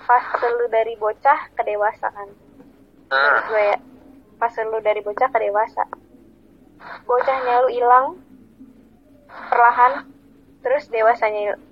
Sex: female